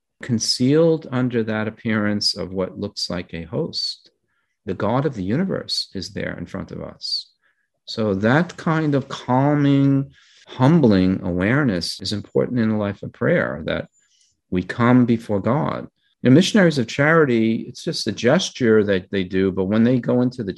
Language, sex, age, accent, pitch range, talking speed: English, male, 50-69, American, 95-130 Hz, 165 wpm